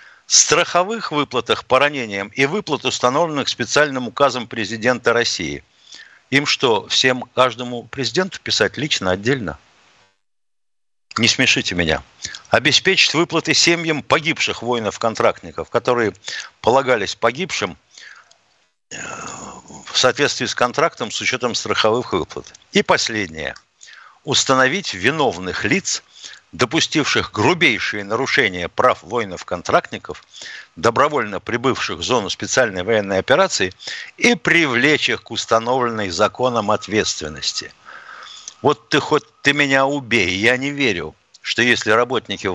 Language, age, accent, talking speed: Russian, 60-79, native, 105 wpm